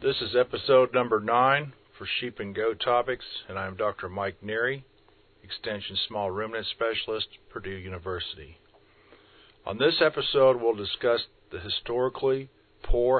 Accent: American